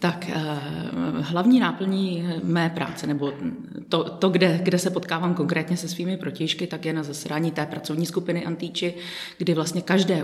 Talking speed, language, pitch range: 165 wpm, Czech, 150-175 Hz